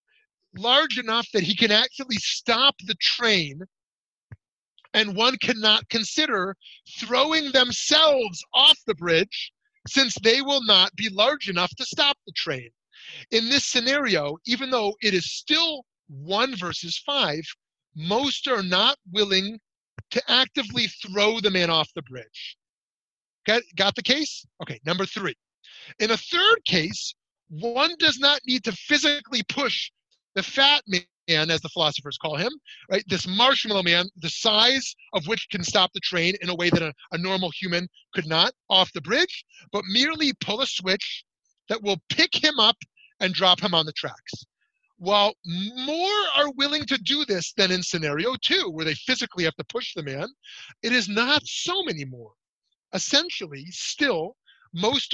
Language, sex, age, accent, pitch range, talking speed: English, male, 30-49, American, 180-270 Hz, 160 wpm